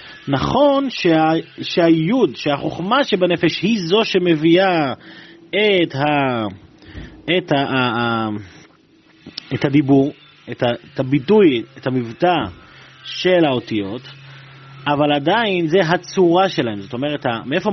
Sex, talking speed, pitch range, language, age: male, 110 wpm, 135-190 Hz, Hebrew, 30-49